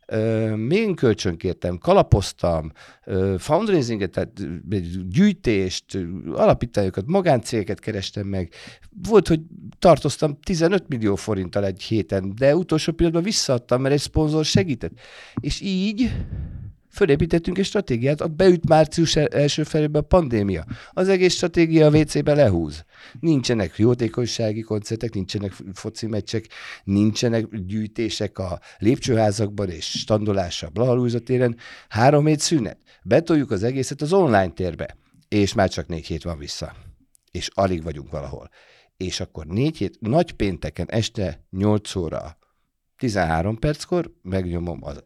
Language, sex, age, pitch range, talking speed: Hungarian, male, 50-69, 85-130 Hz, 120 wpm